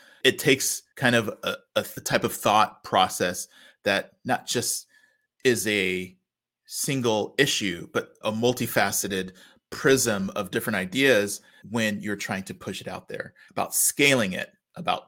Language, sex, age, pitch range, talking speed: English, male, 30-49, 95-115 Hz, 145 wpm